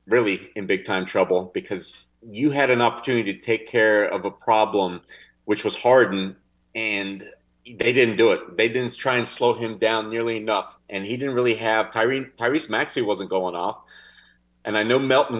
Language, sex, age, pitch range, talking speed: English, male, 30-49, 105-120 Hz, 185 wpm